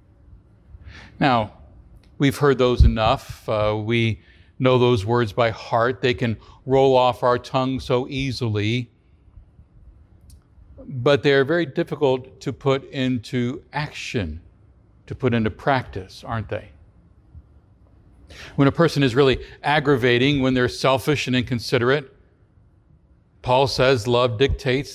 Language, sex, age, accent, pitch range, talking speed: English, male, 60-79, American, 100-135 Hz, 120 wpm